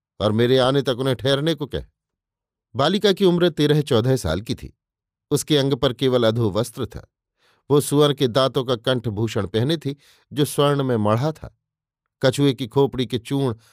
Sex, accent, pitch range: male, native, 115-145 Hz